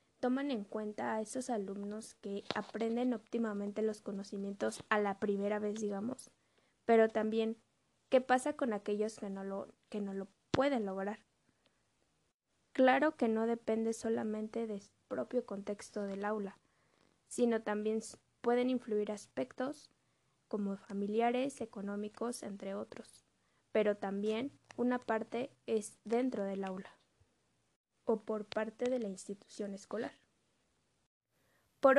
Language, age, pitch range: Spanish, 20-39, 205-245 Hz